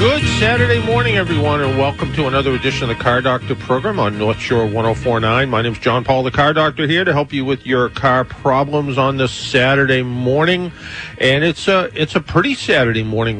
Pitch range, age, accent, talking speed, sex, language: 100-130 Hz, 50-69, American, 195 wpm, male, English